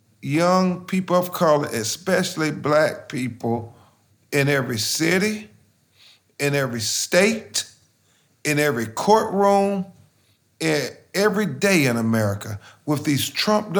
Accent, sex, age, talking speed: American, male, 40-59, 105 wpm